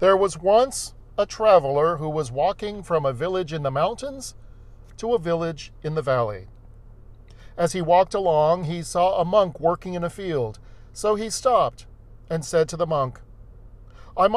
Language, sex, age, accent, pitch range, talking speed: English, male, 40-59, American, 110-180 Hz, 170 wpm